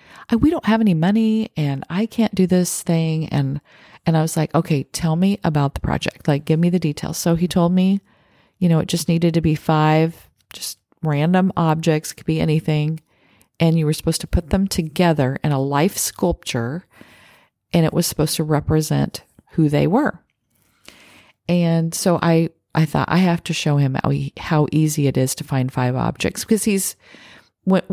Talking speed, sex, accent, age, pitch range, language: 185 wpm, female, American, 40-59, 140-170 Hz, English